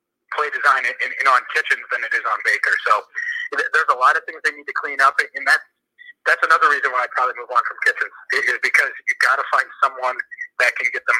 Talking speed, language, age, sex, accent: 255 wpm, English, 40-59, male, American